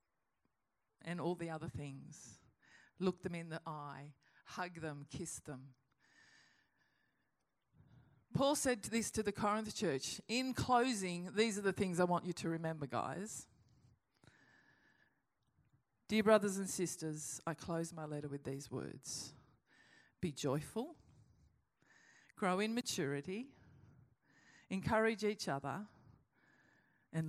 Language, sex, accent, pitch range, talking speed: English, female, Australian, 145-220 Hz, 115 wpm